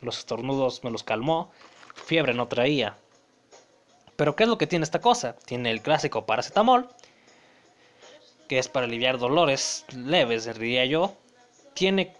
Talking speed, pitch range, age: 145 wpm, 125-170 Hz, 20-39